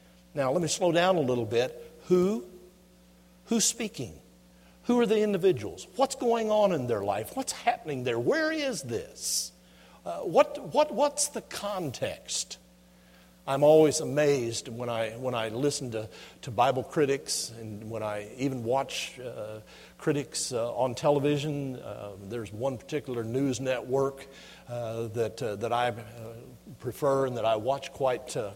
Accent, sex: American, male